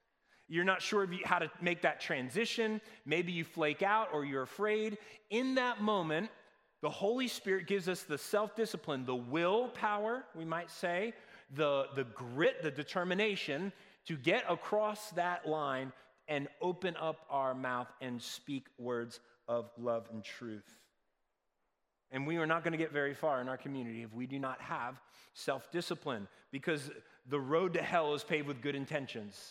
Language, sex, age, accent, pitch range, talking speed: English, male, 30-49, American, 135-200 Hz, 165 wpm